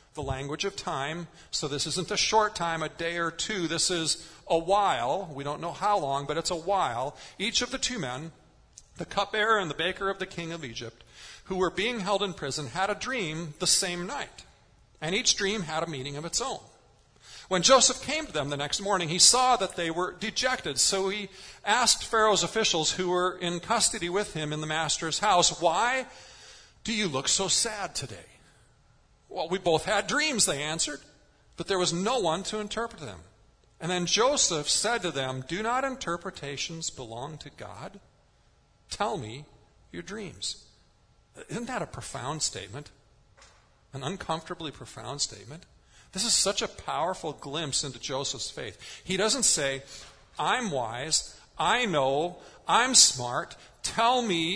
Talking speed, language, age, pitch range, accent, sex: 175 wpm, English, 40-59, 150-200 Hz, American, male